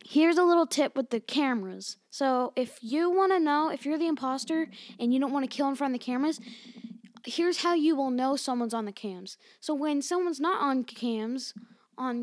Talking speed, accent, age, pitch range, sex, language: 215 wpm, American, 10-29, 220-275 Hz, female, English